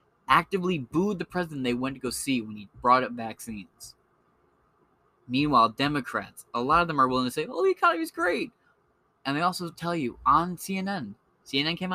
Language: English